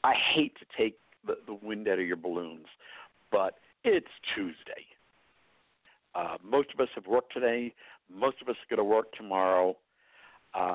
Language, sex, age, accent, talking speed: English, male, 60-79, American, 165 wpm